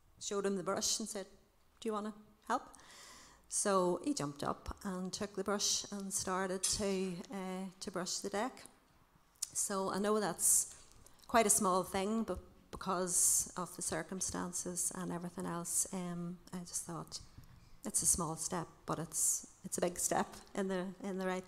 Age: 40-59